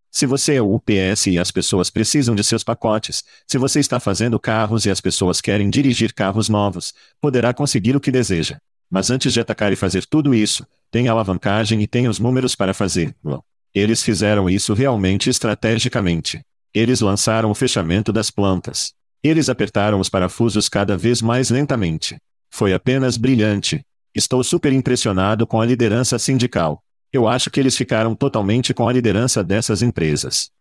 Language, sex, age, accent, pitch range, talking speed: Portuguese, male, 50-69, Brazilian, 100-130 Hz, 165 wpm